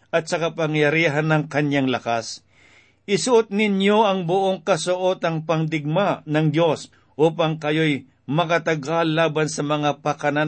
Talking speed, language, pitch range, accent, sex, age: 120 wpm, Filipino, 145-190 Hz, native, male, 50-69